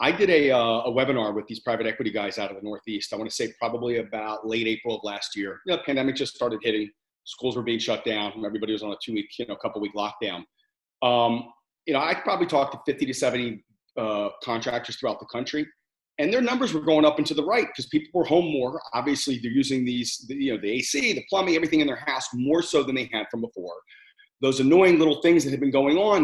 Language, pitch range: English, 115-165 Hz